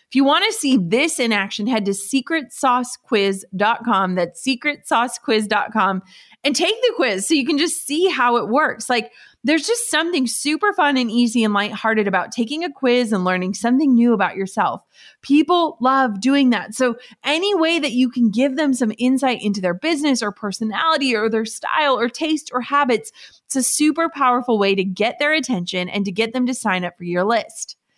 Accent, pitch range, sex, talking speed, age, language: American, 210-285 Hz, female, 195 wpm, 30-49, English